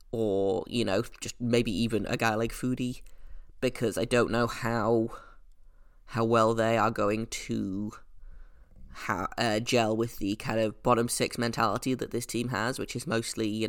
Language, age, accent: English, 20-39, British